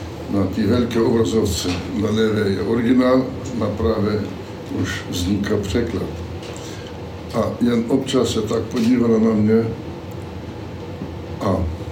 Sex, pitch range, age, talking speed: male, 100-120 Hz, 60-79, 110 wpm